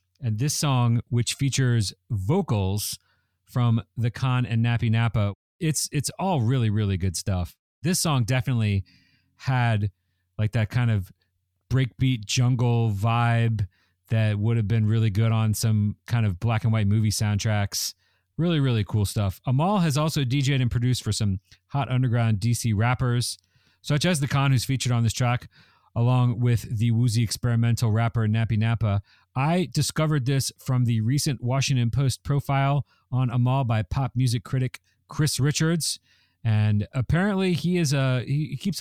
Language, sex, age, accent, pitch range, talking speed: English, male, 40-59, American, 105-130 Hz, 160 wpm